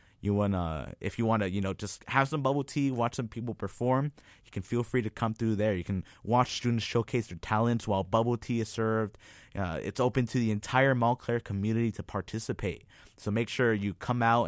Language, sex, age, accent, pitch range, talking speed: English, male, 20-39, American, 100-120 Hz, 220 wpm